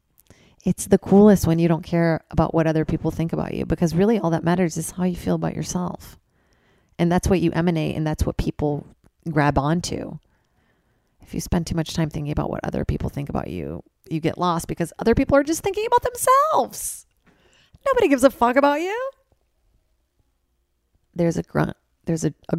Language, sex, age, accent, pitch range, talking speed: English, female, 30-49, American, 145-190 Hz, 195 wpm